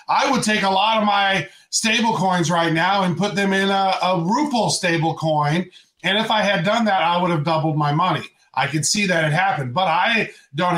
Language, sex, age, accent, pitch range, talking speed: English, male, 30-49, American, 160-200 Hz, 230 wpm